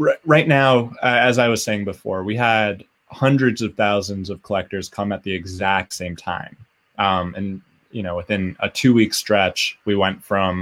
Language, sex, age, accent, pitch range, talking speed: English, male, 20-39, American, 95-115 Hz, 175 wpm